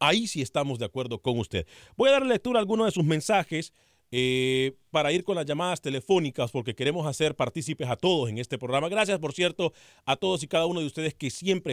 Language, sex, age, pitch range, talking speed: Spanish, male, 40-59, 130-180 Hz, 225 wpm